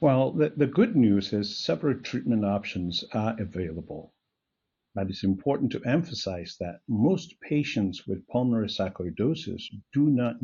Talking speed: 140 wpm